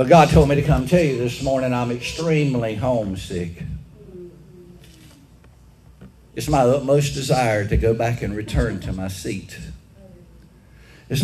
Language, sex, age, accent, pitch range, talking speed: English, male, 60-79, American, 95-145 Hz, 135 wpm